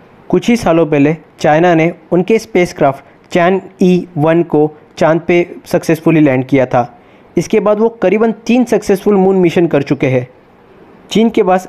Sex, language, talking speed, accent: male, Hindi, 170 wpm, native